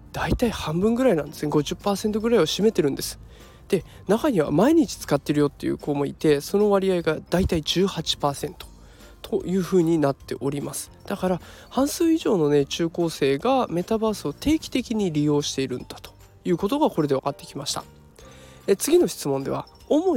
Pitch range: 145-235 Hz